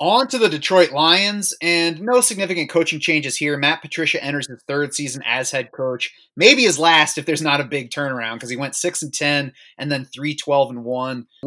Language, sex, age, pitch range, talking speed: English, male, 30-49, 130-165 Hz, 190 wpm